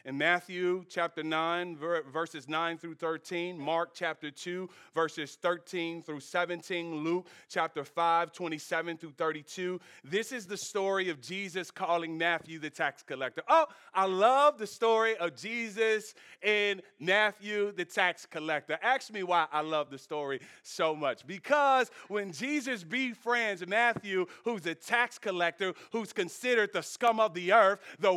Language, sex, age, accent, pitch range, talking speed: English, male, 40-59, American, 180-245 Hz, 150 wpm